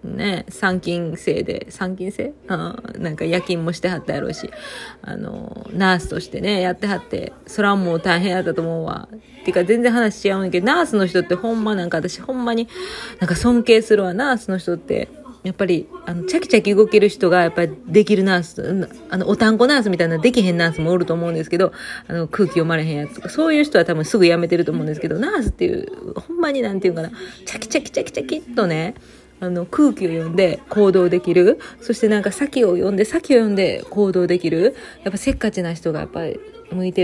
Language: Japanese